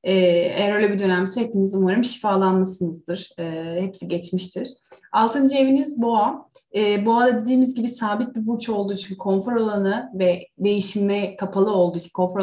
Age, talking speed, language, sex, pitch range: 30-49, 145 wpm, Turkish, female, 185-230 Hz